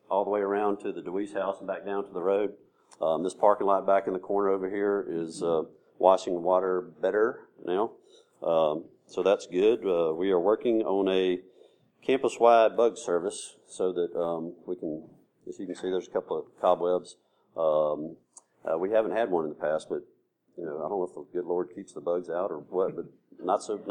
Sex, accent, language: male, American, English